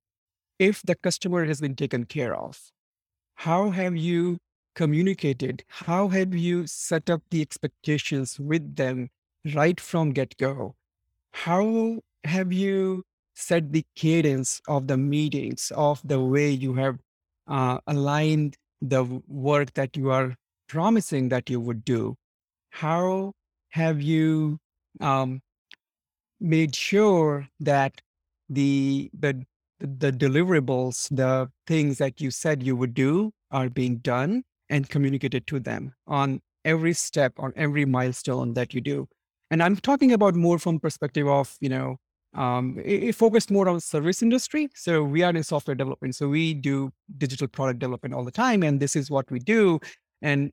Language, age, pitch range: English, 50-69, 130-170 Hz